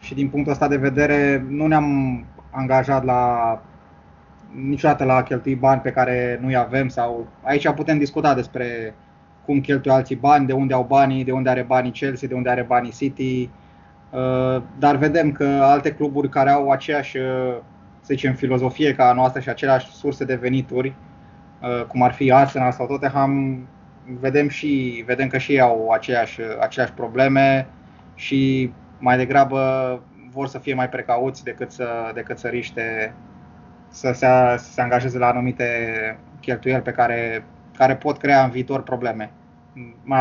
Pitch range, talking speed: 120-135 Hz, 155 wpm